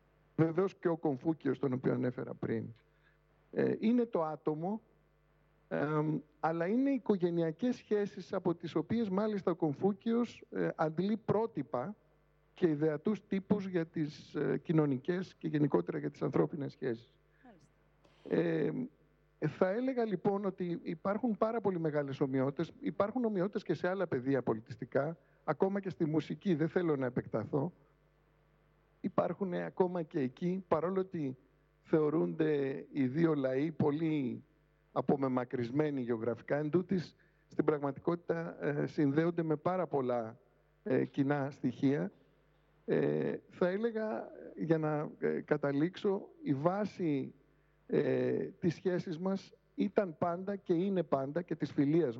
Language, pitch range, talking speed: Greek, 145-190 Hz, 120 wpm